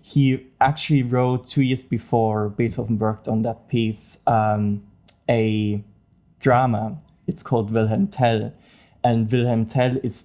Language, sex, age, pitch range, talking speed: English, male, 20-39, 105-125 Hz, 130 wpm